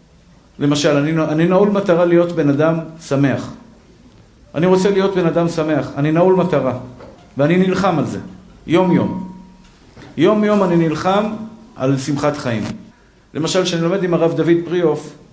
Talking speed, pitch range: 140 wpm, 125-175 Hz